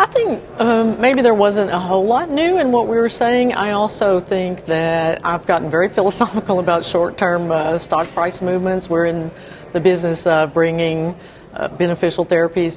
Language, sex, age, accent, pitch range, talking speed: English, female, 50-69, American, 160-195 Hz, 185 wpm